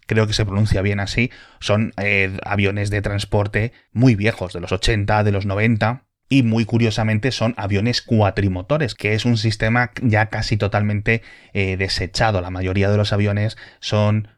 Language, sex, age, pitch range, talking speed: Spanish, male, 20-39, 100-120 Hz, 165 wpm